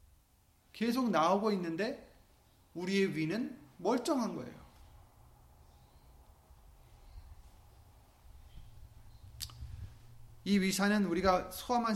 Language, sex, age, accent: Korean, male, 40-59, native